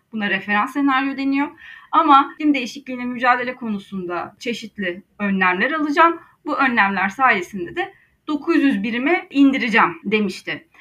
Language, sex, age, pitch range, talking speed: Turkish, female, 30-49, 205-280 Hz, 110 wpm